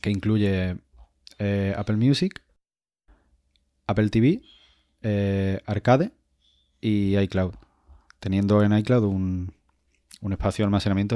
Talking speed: 100 wpm